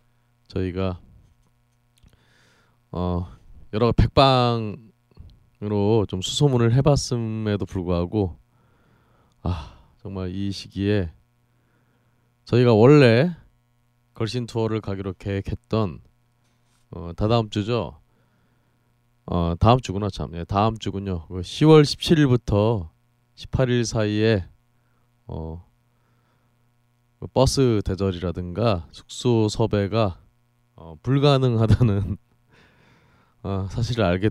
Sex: male